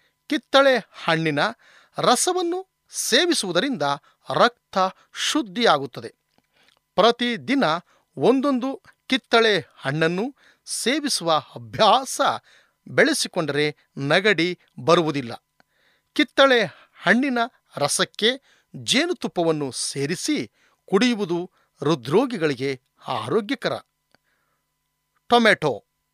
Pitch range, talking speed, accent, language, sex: 165-265 Hz, 55 wpm, native, Kannada, male